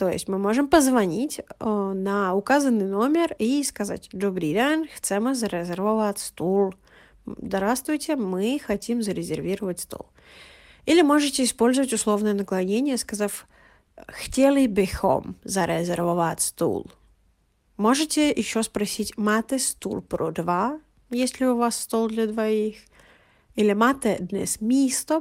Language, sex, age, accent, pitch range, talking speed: Russian, female, 30-49, native, 200-265 Hz, 115 wpm